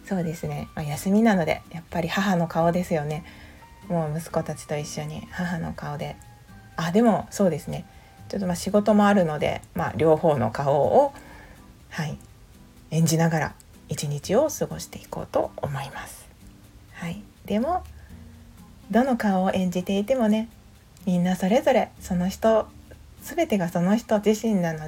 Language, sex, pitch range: Japanese, female, 155-210 Hz